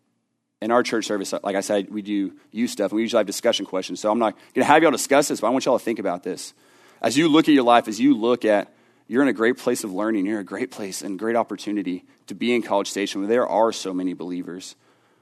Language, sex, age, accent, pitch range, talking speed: English, male, 30-49, American, 100-120 Hz, 285 wpm